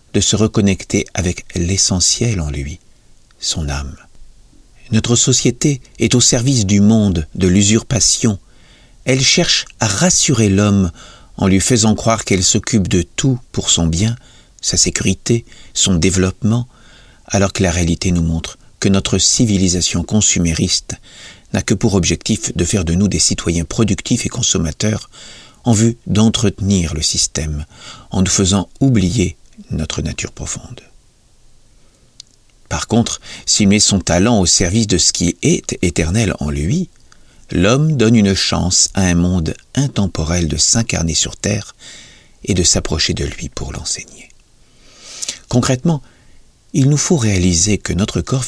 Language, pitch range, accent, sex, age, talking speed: French, 85-115 Hz, French, male, 50-69, 140 wpm